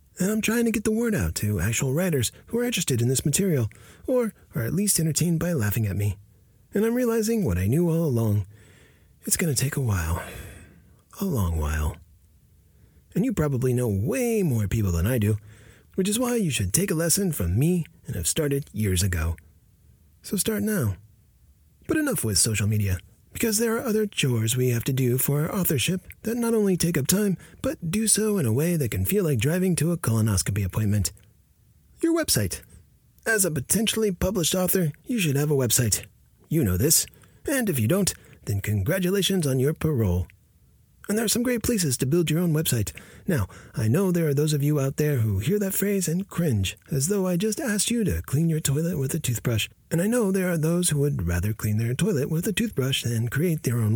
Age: 30-49